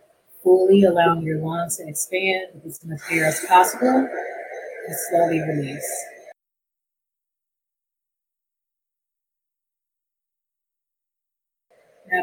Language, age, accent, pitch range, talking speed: English, 30-49, American, 180-225 Hz, 75 wpm